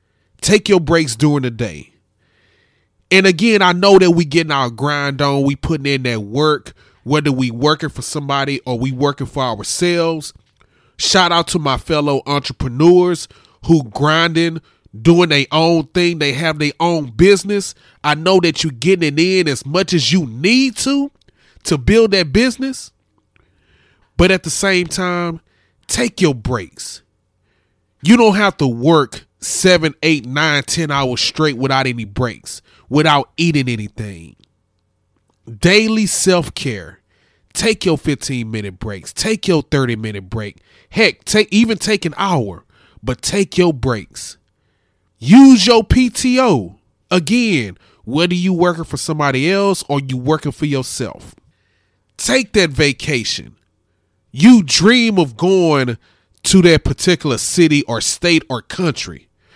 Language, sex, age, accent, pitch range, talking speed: English, male, 20-39, American, 115-180 Hz, 140 wpm